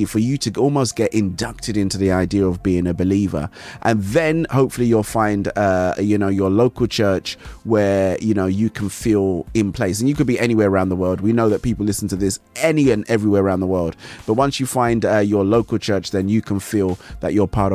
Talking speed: 230 wpm